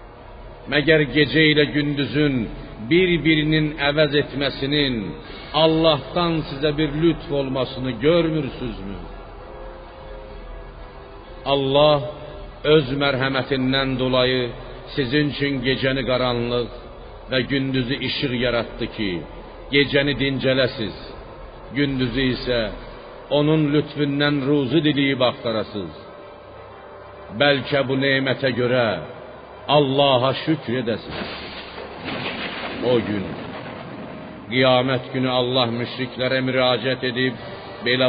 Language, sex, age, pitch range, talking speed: Persian, male, 60-79, 115-145 Hz, 80 wpm